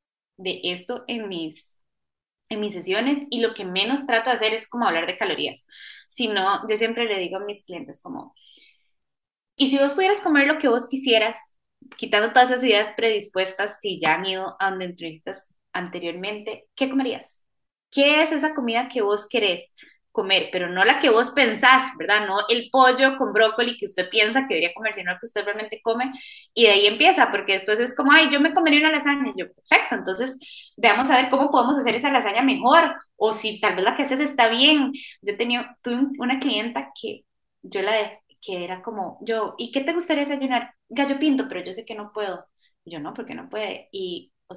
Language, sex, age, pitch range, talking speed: Spanish, female, 10-29, 205-270 Hz, 205 wpm